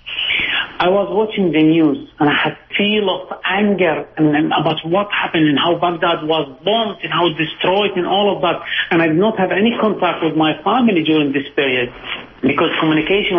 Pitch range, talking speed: 160-205 Hz, 195 wpm